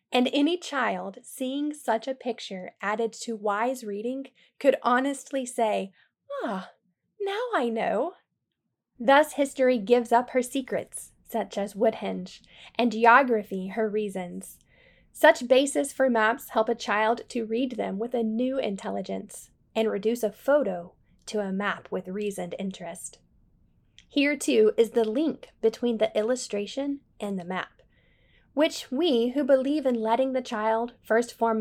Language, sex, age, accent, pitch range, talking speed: English, female, 10-29, American, 205-260 Hz, 145 wpm